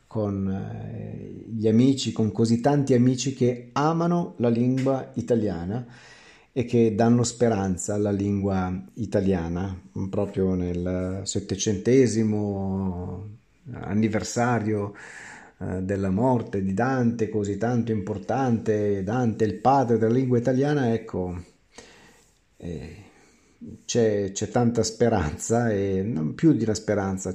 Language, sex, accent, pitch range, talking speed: Italian, male, native, 100-130 Hz, 105 wpm